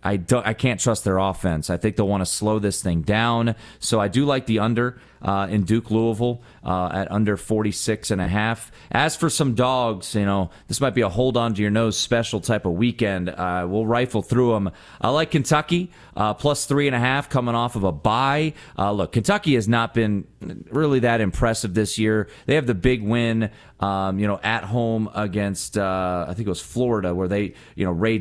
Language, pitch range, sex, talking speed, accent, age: English, 100-120 Hz, male, 200 wpm, American, 30-49